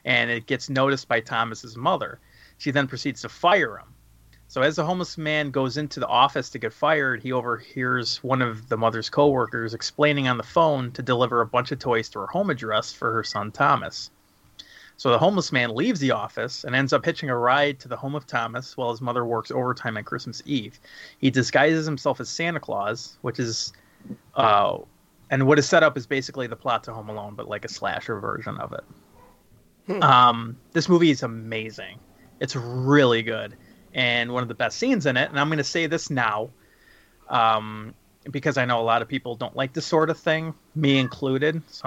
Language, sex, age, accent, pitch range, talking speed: English, male, 30-49, American, 115-145 Hz, 205 wpm